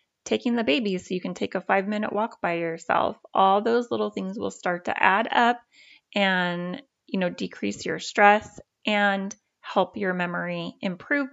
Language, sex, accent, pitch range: English, female, American, 195-235 Hz